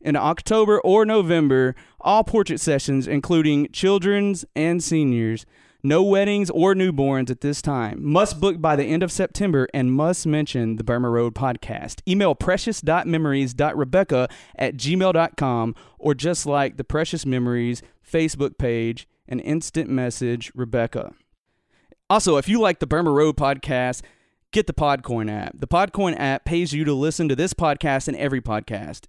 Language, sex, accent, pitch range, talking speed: English, male, American, 125-165 Hz, 150 wpm